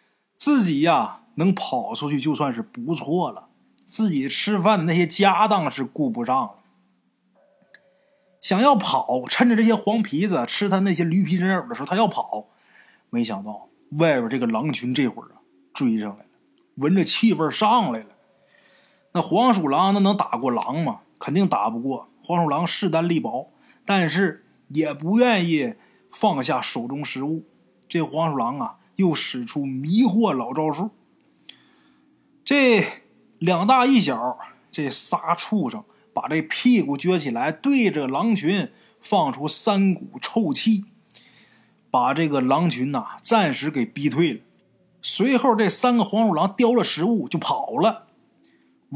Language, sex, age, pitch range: Chinese, male, 20-39, 160-235 Hz